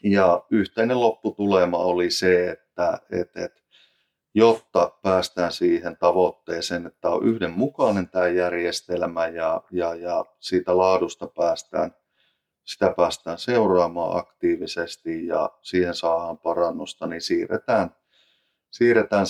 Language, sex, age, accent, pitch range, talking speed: Finnish, male, 30-49, native, 90-105 Hz, 105 wpm